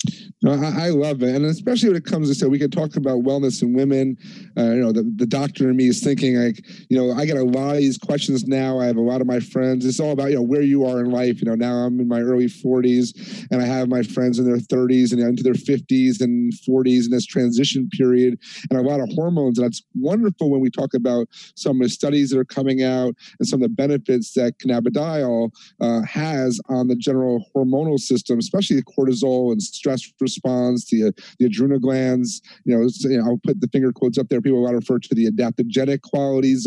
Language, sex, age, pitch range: English, male, 40-59, 125-145 Hz